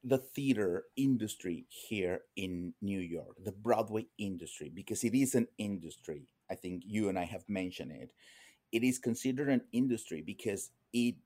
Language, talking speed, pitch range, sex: English, 160 wpm, 105-135 Hz, male